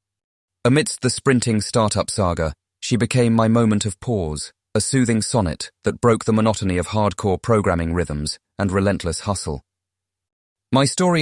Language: English